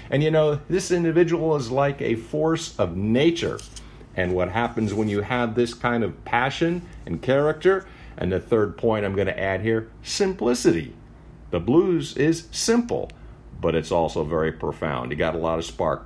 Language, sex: English, male